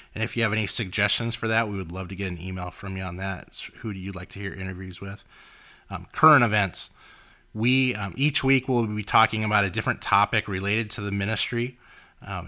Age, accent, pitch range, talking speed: 30-49, American, 95-115 Hz, 225 wpm